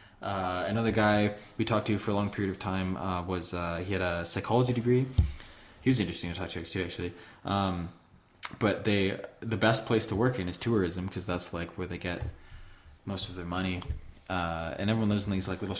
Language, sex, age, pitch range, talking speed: English, male, 20-39, 95-110 Hz, 215 wpm